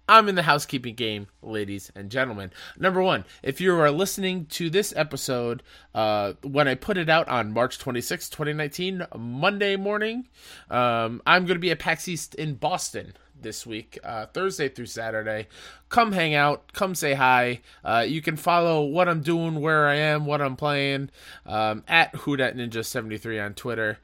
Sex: male